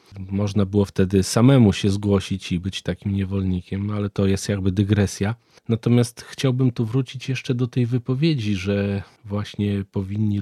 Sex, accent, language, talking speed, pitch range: male, native, Polish, 150 wpm, 100-125 Hz